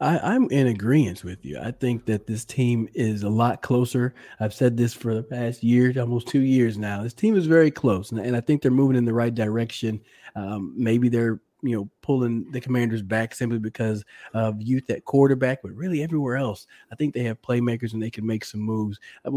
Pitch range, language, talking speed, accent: 110-135 Hz, English, 220 wpm, American